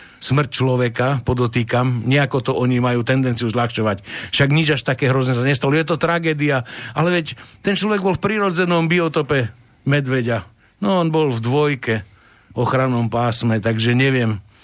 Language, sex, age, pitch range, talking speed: Slovak, male, 60-79, 110-135 Hz, 150 wpm